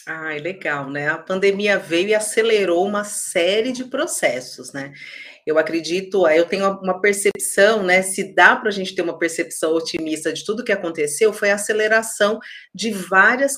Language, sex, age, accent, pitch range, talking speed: Portuguese, female, 30-49, Brazilian, 165-220 Hz, 170 wpm